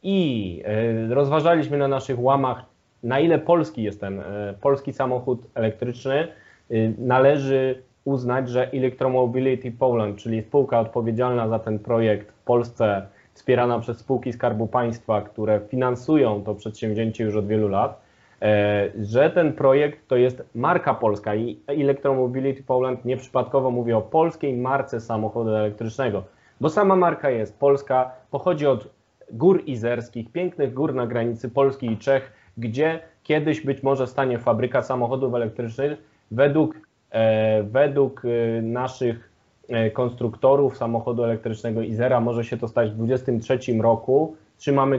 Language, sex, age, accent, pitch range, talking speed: Polish, male, 20-39, native, 115-140 Hz, 125 wpm